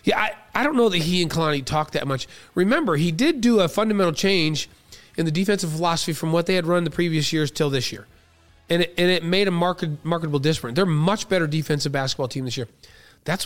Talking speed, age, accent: 230 wpm, 30-49, American